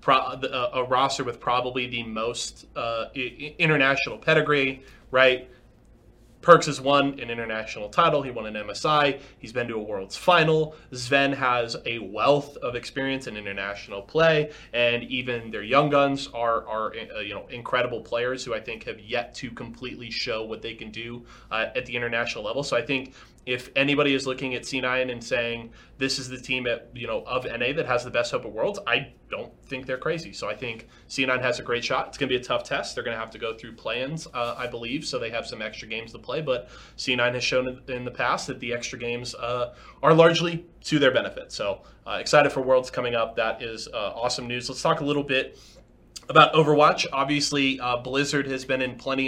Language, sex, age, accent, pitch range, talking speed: English, male, 20-39, American, 120-140 Hz, 205 wpm